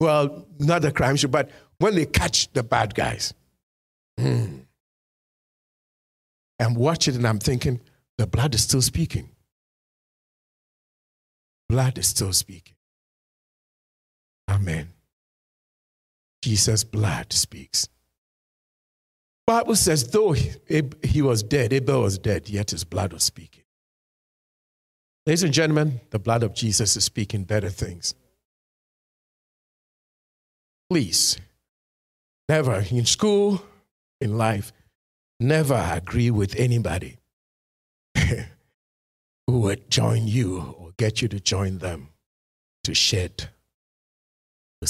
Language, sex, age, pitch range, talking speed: English, male, 50-69, 80-135 Hz, 110 wpm